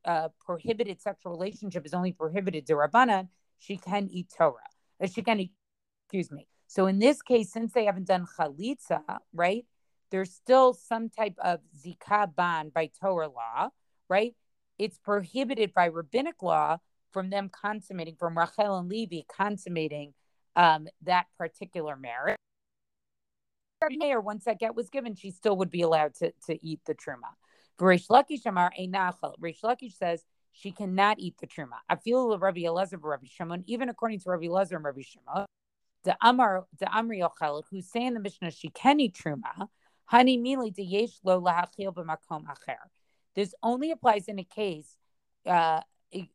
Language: English